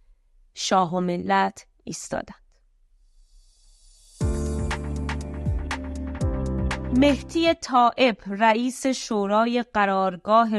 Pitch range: 175-225 Hz